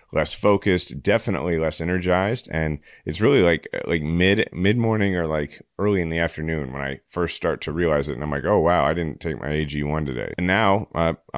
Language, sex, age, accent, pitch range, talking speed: English, male, 30-49, American, 75-95 Hz, 215 wpm